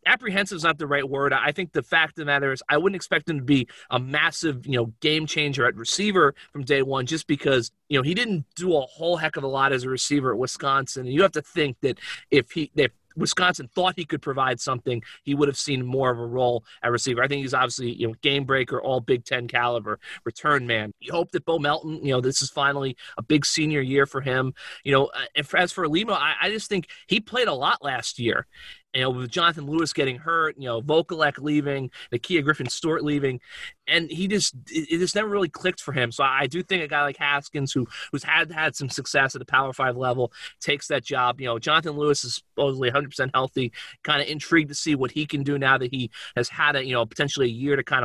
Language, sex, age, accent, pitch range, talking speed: English, male, 30-49, American, 130-160 Hz, 240 wpm